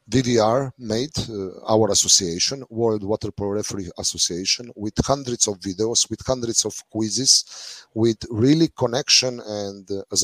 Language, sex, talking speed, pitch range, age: German, male, 140 wpm, 100-120 Hz, 40-59